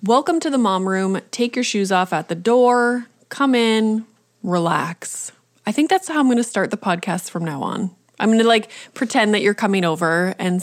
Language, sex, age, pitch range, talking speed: English, female, 20-39, 185-235 Hz, 215 wpm